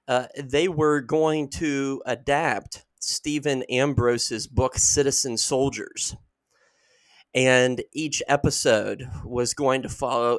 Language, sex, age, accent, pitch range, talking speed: English, male, 30-49, American, 120-150 Hz, 105 wpm